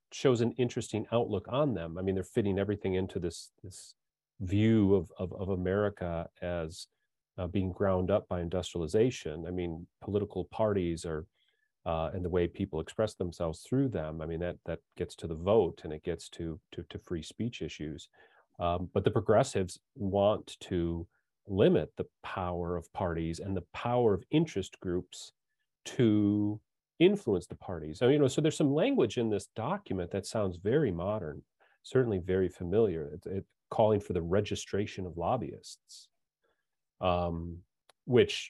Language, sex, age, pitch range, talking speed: English, male, 40-59, 85-105 Hz, 165 wpm